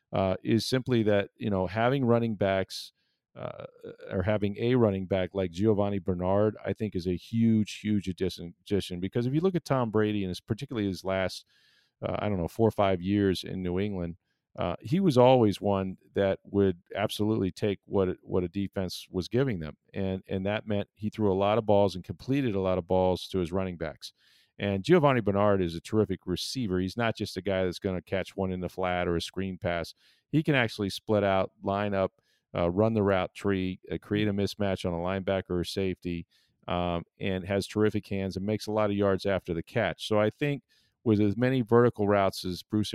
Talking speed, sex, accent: 215 wpm, male, American